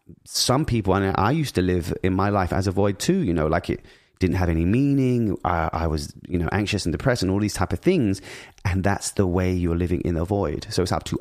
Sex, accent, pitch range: male, British, 90-110 Hz